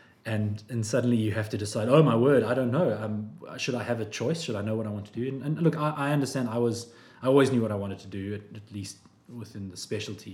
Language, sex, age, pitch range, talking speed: English, male, 20-39, 105-125 Hz, 285 wpm